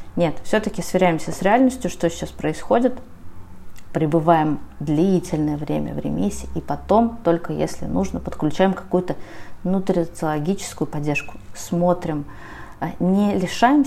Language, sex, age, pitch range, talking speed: Russian, female, 20-39, 145-180 Hz, 110 wpm